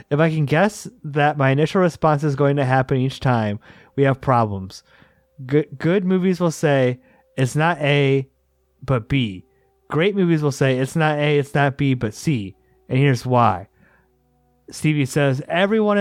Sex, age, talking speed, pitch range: male, 30-49, 170 wpm, 125-155 Hz